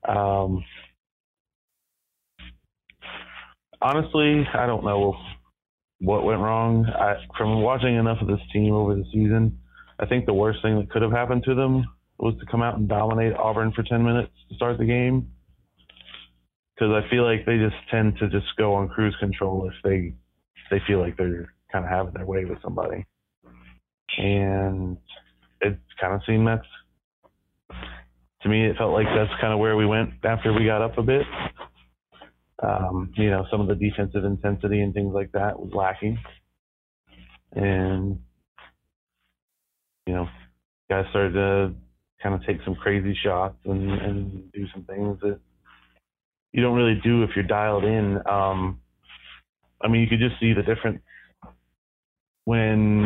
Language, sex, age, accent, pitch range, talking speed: English, male, 30-49, American, 95-110 Hz, 160 wpm